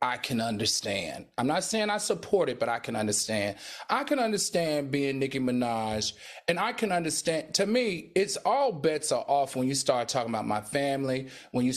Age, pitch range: 30-49, 115-150 Hz